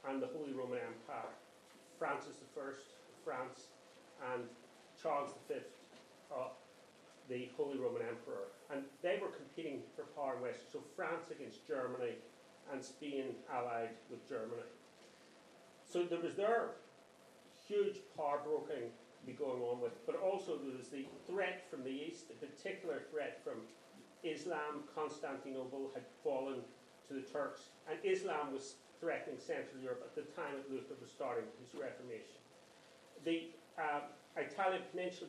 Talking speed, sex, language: 140 wpm, male, English